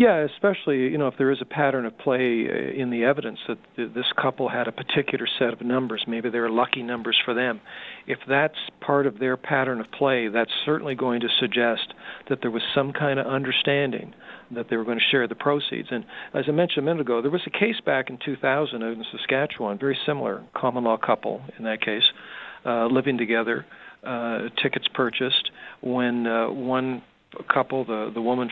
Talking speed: 205 wpm